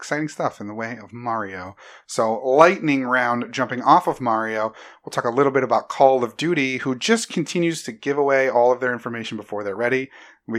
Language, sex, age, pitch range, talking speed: English, male, 30-49, 105-130 Hz, 210 wpm